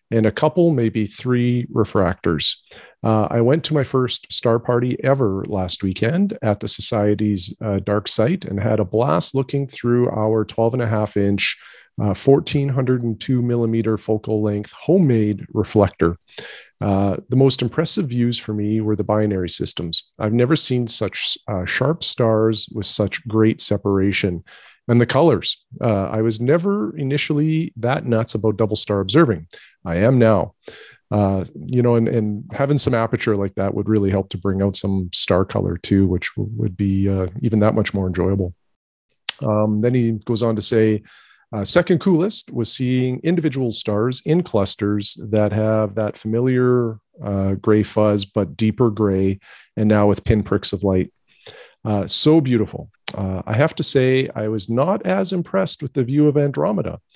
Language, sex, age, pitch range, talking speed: English, male, 40-59, 105-125 Hz, 170 wpm